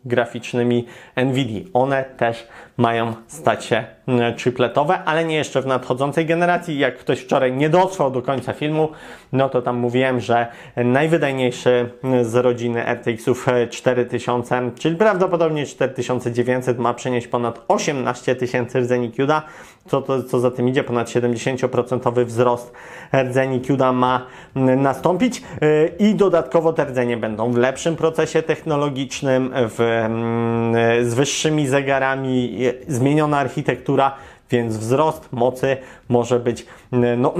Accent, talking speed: native, 120 wpm